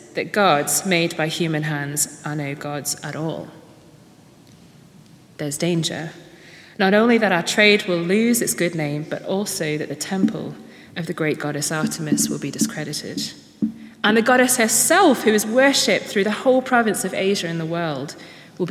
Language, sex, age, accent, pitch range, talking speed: English, female, 30-49, British, 165-235 Hz, 170 wpm